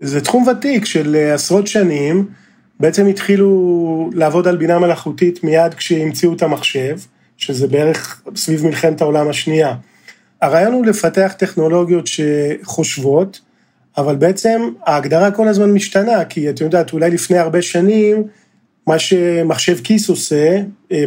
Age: 40-59